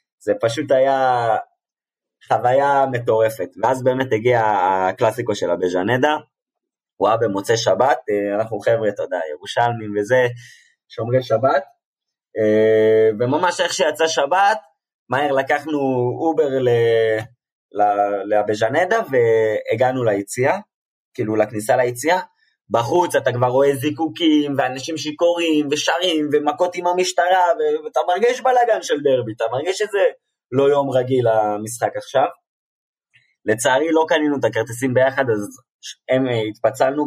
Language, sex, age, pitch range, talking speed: Hebrew, male, 20-39, 115-175 Hz, 115 wpm